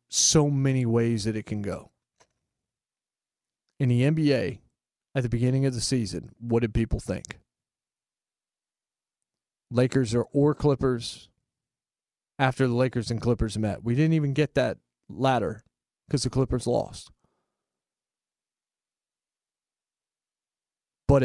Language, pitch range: English, 110-135 Hz